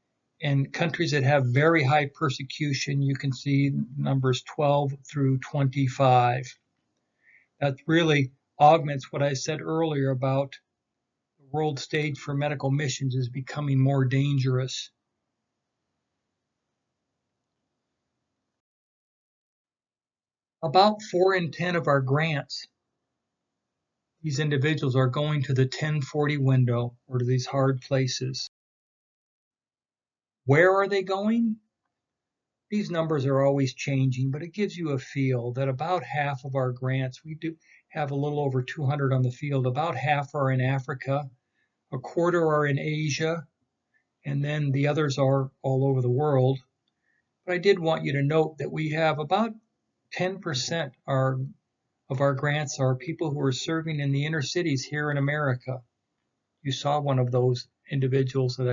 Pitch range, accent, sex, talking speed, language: 130-155 Hz, American, male, 140 wpm, English